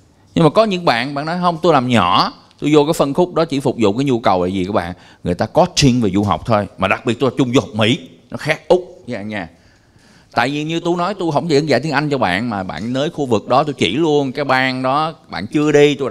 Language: Vietnamese